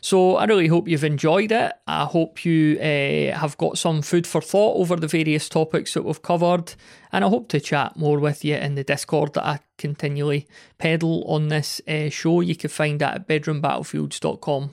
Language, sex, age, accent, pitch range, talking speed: English, male, 30-49, British, 150-170 Hz, 200 wpm